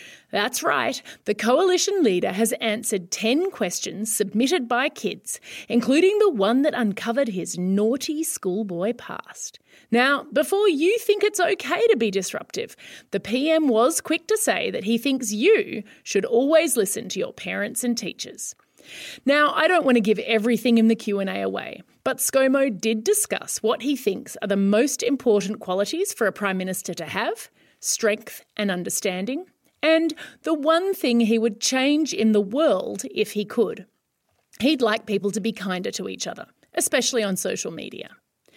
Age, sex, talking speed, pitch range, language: 30-49, female, 165 wpm, 210-315 Hz, English